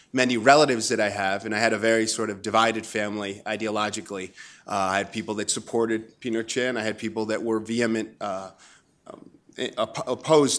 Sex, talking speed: male, 175 wpm